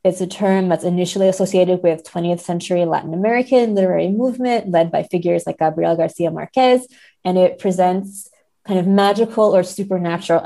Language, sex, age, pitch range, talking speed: English, female, 20-39, 175-215 Hz, 160 wpm